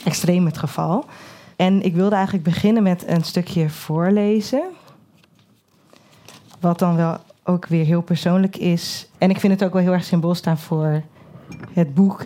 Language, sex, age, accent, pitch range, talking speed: Dutch, female, 20-39, Dutch, 165-200 Hz, 160 wpm